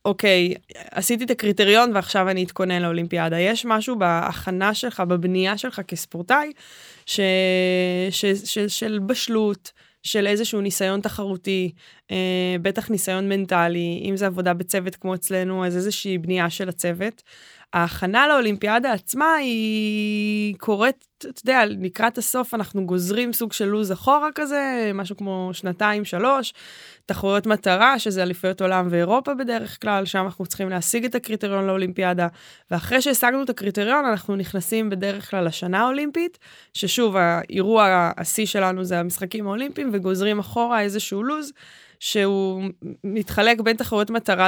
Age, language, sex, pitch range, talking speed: 20-39, Hebrew, female, 185-220 Hz, 135 wpm